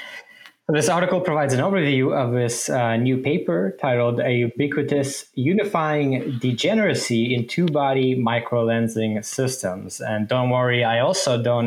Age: 20-39